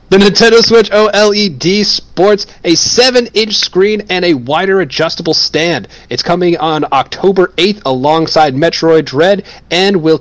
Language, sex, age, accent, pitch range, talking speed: English, male, 30-49, American, 140-200 Hz, 135 wpm